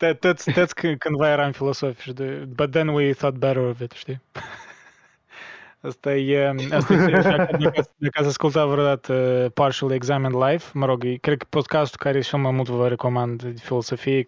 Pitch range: 125-150 Hz